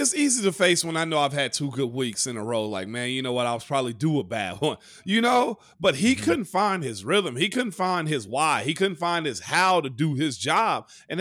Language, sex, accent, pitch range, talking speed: English, male, American, 140-200 Hz, 270 wpm